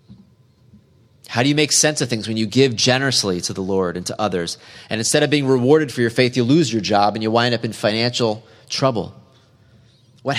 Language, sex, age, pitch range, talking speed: English, male, 30-49, 110-130 Hz, 215 wpm